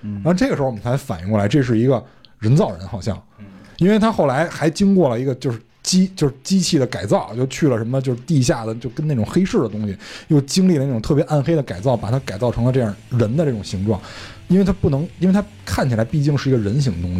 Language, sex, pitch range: Chinese, male, 110-150 Hz